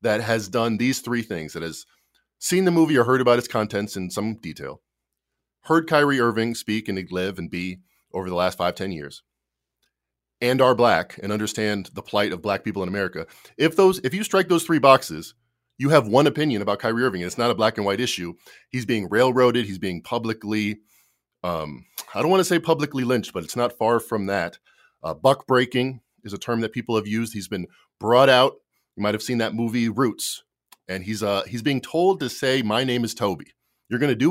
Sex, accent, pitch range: male, American, 100-130 Hz